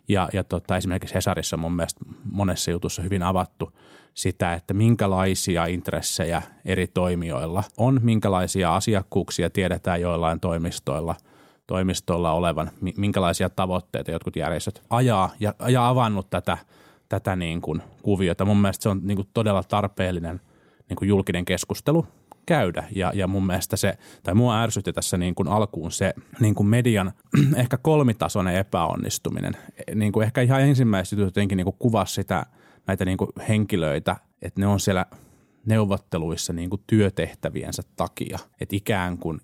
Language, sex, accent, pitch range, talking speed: Finnish, male, native, 90-105 Hz, 145 wpm